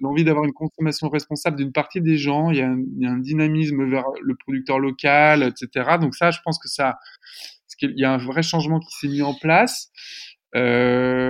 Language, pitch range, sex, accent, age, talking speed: French, 120-150 Hz, male, French, 20-39, 220 wpm